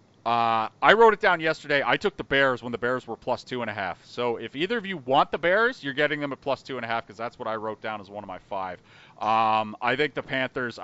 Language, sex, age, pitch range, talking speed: English, male, 30-49, 100-125 Hz, 290 wpm